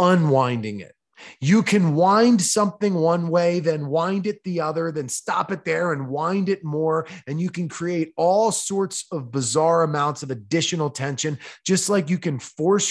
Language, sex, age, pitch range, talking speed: English, male, 20-39, 140-175 Hz, 175 wpm